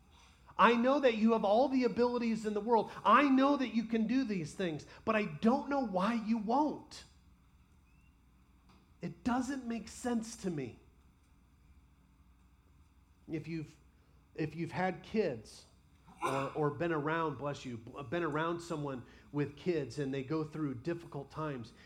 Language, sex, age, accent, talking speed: English, male, 40-59, American, 150 wpm